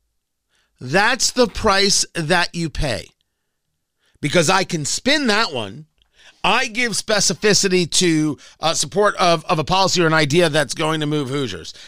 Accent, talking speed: American, 150 wpm